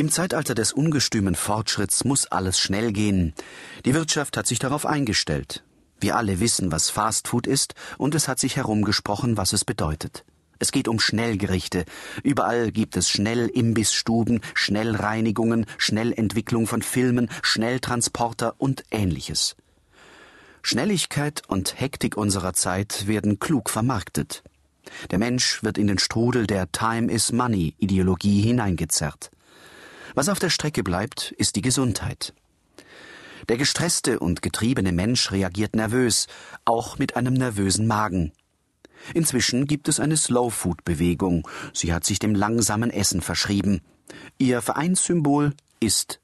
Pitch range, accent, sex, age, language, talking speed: 100-125 Hz, German, male, 40-59, German, 125 wpm